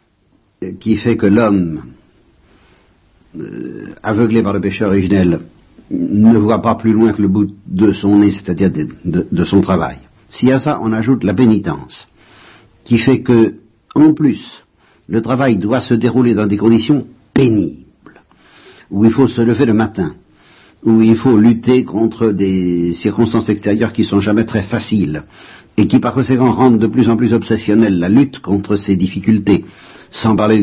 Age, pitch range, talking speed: 60-79, 95-120 Hz, 170 wpm